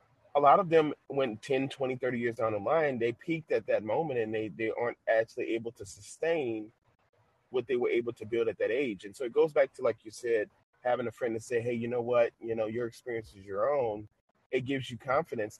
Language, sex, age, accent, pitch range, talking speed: English, male, 30-49, American, 110-135 Hz, 240 wpm